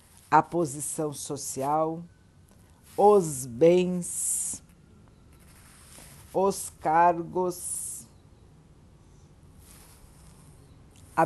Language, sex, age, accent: Portuguese, female, 60-79, Brazilian